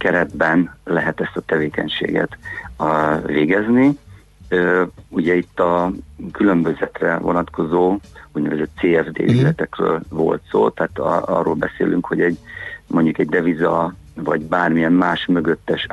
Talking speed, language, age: 100 wpm, Hungarian, 60-79